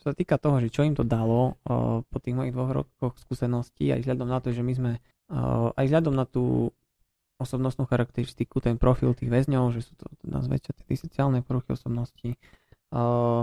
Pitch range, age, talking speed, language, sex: 115-130 Hz, 20-39, 190 wpm, Slovak, male